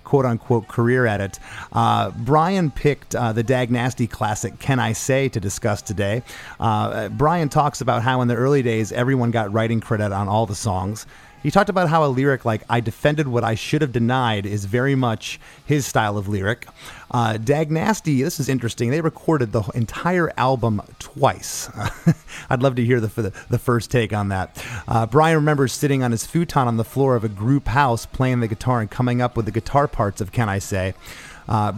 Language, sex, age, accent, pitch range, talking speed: English, male, 30-49, American, 110-140 Hz, 200 wpm